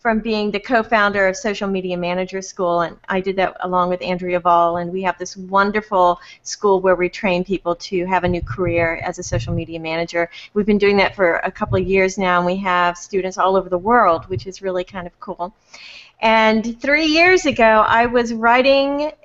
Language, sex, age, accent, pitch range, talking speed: English, female, 40-59, American, 185-225 Hz, 210 wpm